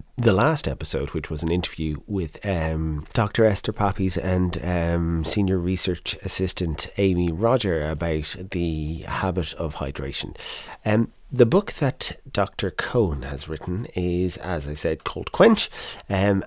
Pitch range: 80-100 Hz